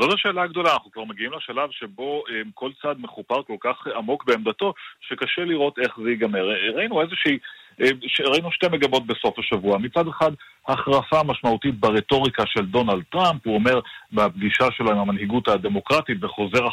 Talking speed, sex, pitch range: 165 wpm, male, 110-145 Hz